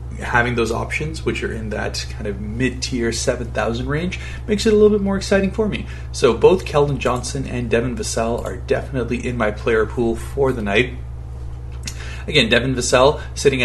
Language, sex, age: English, male, 30-49